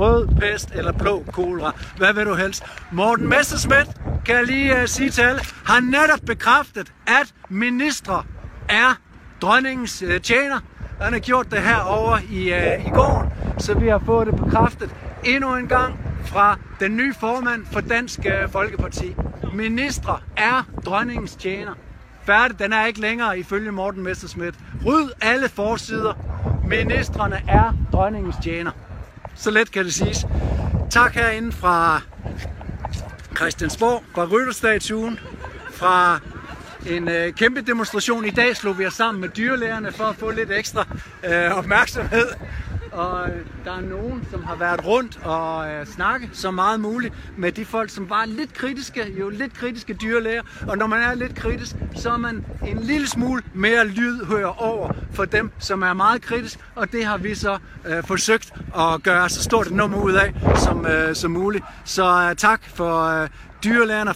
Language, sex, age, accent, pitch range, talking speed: Danish, male, 60-79, native, 175-235 Hz, 160 wpm